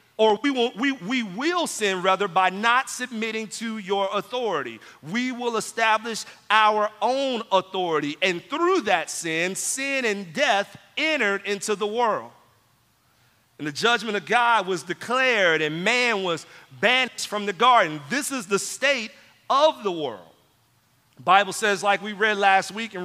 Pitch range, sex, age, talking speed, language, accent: 185-235 Hz, male, 40-59, 155 wpm, English, American